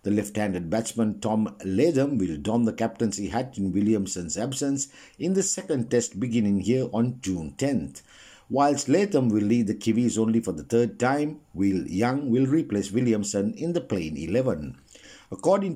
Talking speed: 170 wpm